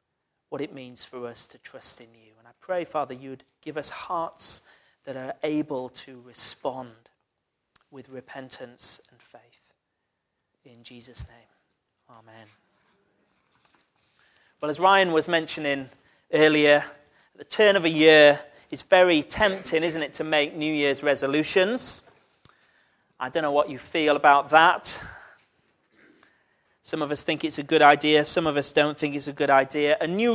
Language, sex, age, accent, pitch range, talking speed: English, male, 30-49, British, 140-175 Hz, 155 wpm